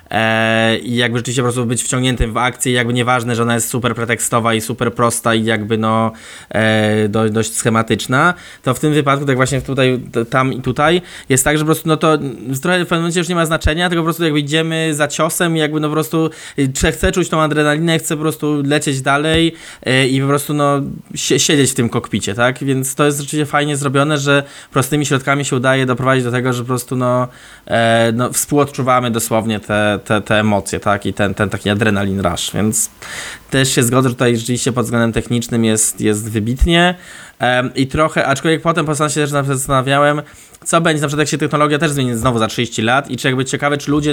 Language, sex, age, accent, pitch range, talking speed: Polish, male, 20-39, native, 120-145 Hz, 205 wpm